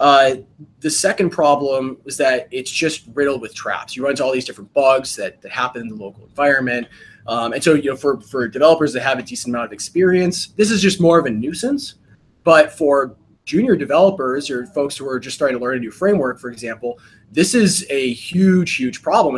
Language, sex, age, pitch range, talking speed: English, male, 20-39, 125-160 Hz, 215 wpm